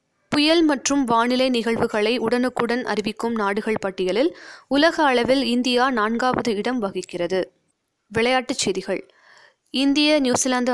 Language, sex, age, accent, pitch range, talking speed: Tamil, female, 20-39, native, 210-265 Hz, 100 wpm